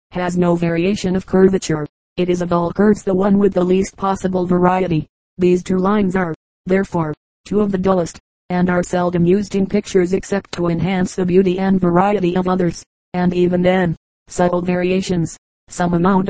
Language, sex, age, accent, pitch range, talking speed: English, female, 40-59, American, 175-195 Hz, 175 wpm